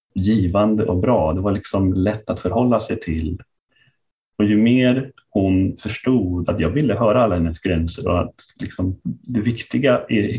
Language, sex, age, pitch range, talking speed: Swedish, male, 30-49, 90-115 Hz, 170 wpm